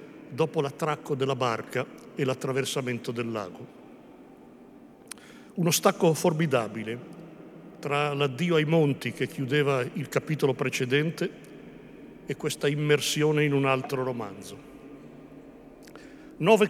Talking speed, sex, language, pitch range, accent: 100 wpm, male, Italian, 130-150 Hz, native